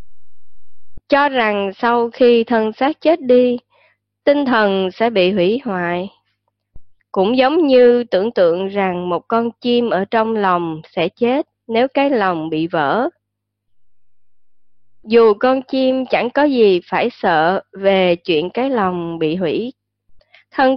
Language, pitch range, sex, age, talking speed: Vietnamese, 185-250 Hz, female, 20-39, 140 wpm